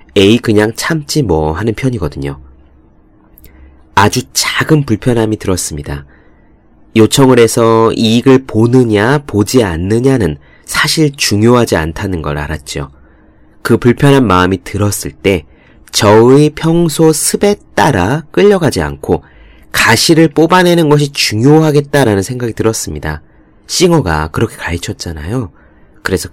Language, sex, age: Korean, male, 30-49